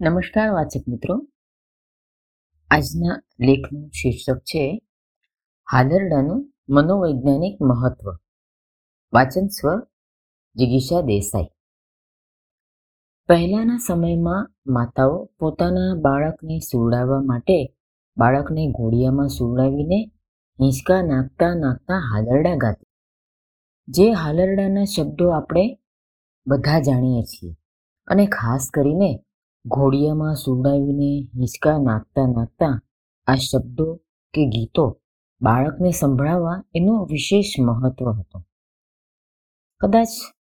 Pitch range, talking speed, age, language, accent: 120-175 Hz, 80 wpm, 30-49, Gujarati, native